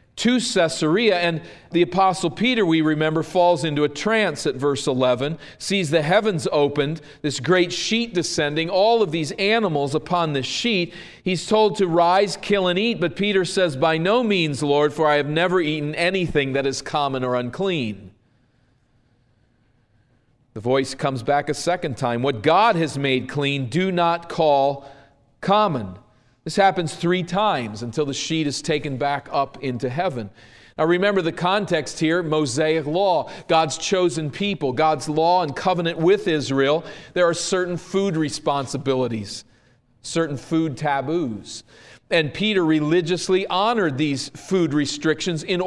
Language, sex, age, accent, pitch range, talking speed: English, male, 40-59, American, 135-175 Hz, 150 wpm